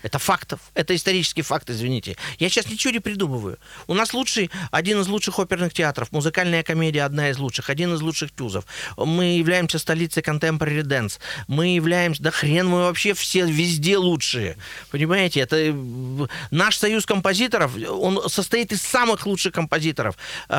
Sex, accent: male, native